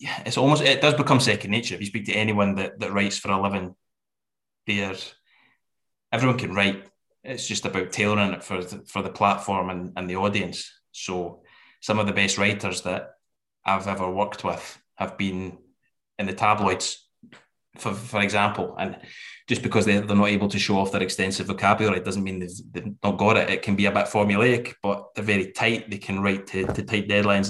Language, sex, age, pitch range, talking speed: English, male, 20-39, 95-105 Hz, 195 wpm